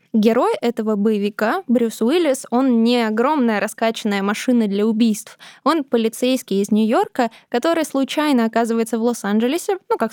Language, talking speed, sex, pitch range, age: Russian, 135 wpm, female, 220-255 Hz, 20-39